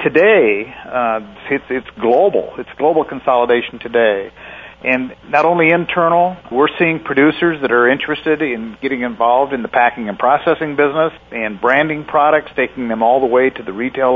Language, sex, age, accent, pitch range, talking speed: English, male, 50-69, American, 120-150 Hz, 165 wpm